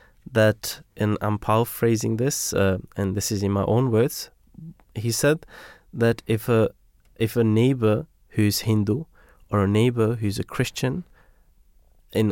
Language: English